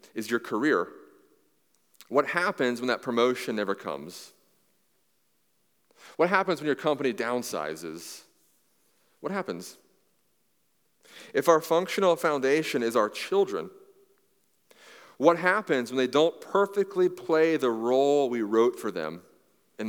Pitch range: 125-195 Hz